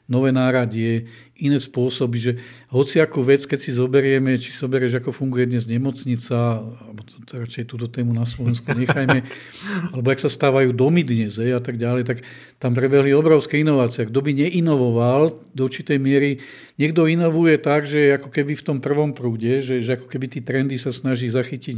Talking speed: 175 wpm